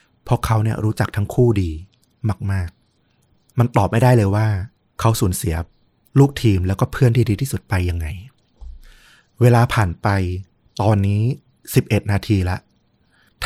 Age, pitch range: 20-39, 95-120 Hz